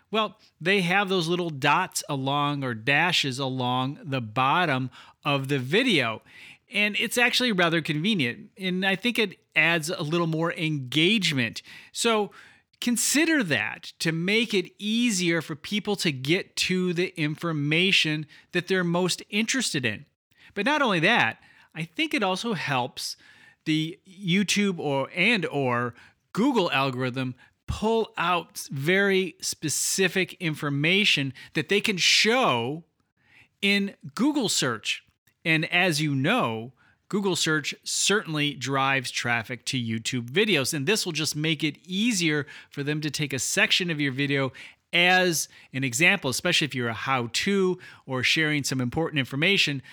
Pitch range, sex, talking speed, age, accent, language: 140-195 Hz, male, 140 wpm, 30-49, American, English